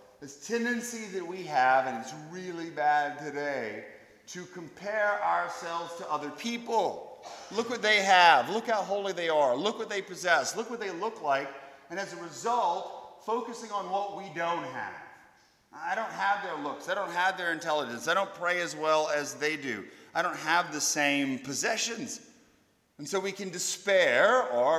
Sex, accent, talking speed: male, American, 180 wpm